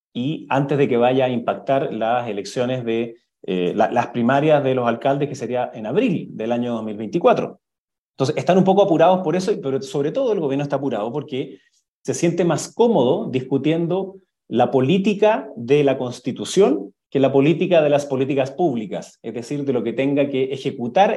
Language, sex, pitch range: Spanish, male, 125-175 Hz